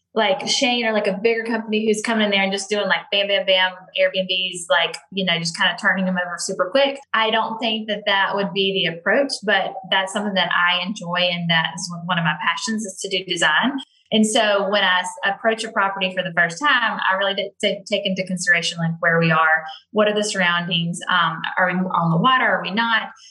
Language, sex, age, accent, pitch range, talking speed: English, female, 10-29, American, 175-215 Hz, 225 wpm